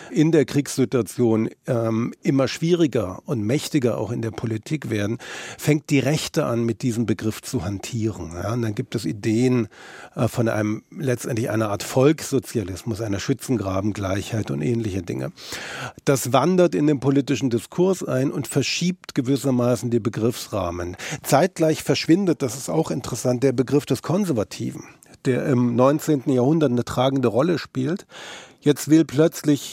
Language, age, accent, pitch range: German, 50-69, German, 115-145 Hz